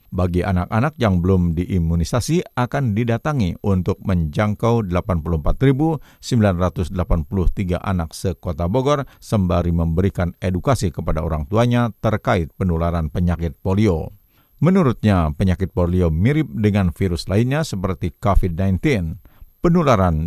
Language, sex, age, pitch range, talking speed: Indonesian, male, 50-69, 90-120 Hz, 100 wpm